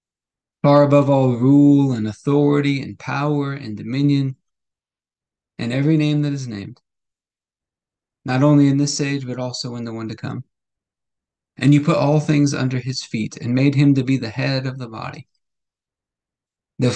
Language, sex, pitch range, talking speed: English, male, 120-145 Hz, 165 wpm